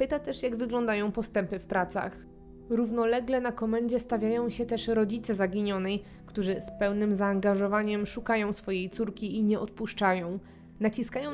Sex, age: female, 20-39